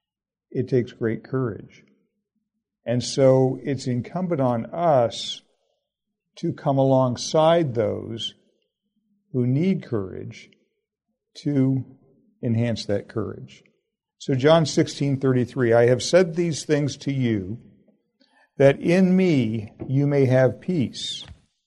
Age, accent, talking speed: 50-69, American, 105 wpm